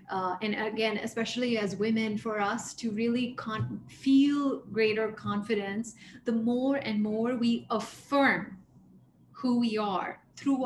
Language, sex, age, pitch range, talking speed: English, female, 30-49, 205-240 Hz, 130 wpm